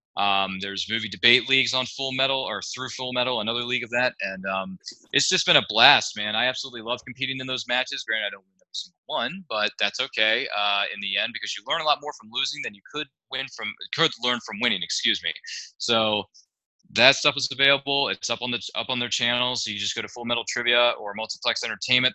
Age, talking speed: 20-39, 235 wpm